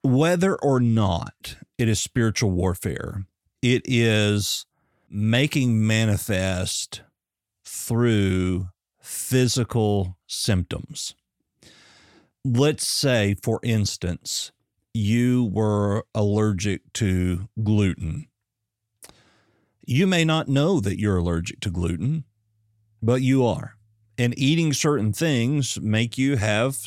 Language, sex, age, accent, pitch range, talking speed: English, male, 50-69, American, 100-125 Hz, 95 wpm